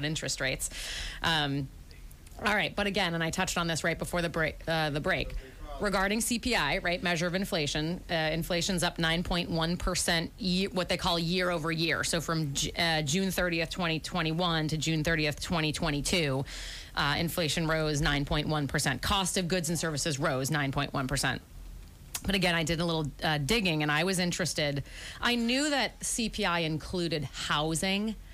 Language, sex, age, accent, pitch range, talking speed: English, female, 30-49, American, 150-180 Hz, 155 wpm